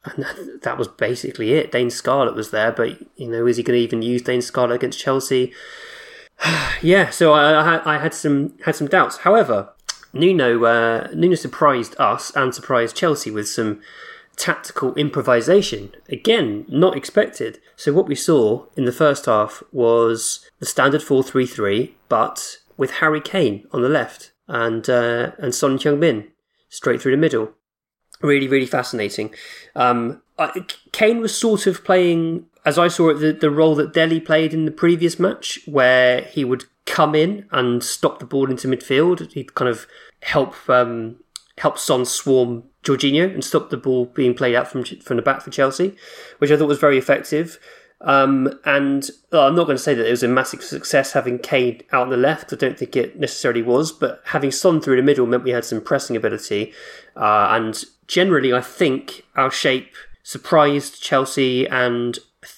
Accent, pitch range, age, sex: British, 125-155 Hz, 20-39, male